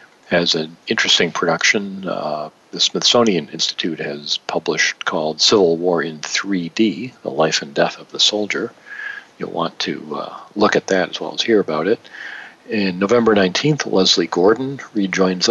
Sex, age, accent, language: male, 50-69, American, English